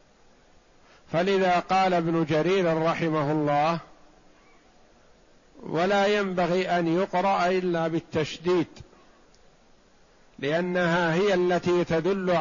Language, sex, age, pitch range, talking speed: Arabic, male, 50-69, 160-190 Hz, 75 wpm